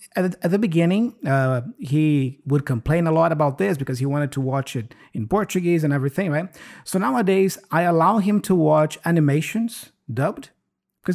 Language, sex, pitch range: English, male, 135-175 Hz